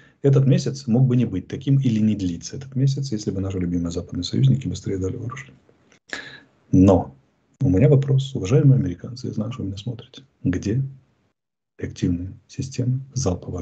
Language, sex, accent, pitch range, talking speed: Russian, male, native, 100-130 Hz, 165 wpm